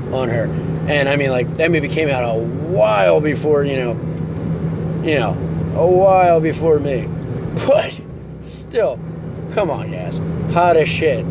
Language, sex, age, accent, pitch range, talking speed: English, male, 30-49, American, 150-175 Hz, 155 wpm